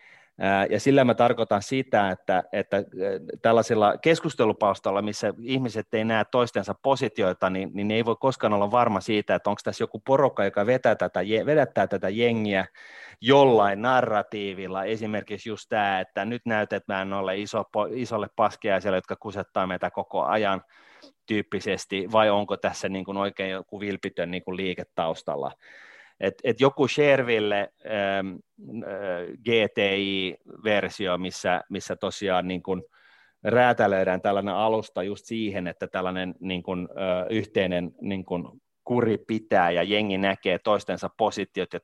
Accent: native